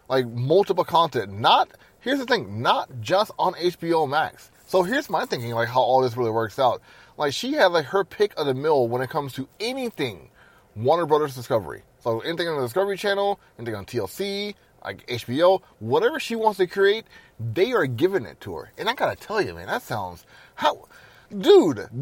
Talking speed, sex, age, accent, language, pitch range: 195 wpm, male, 30-49, American, English, 130-195 Hz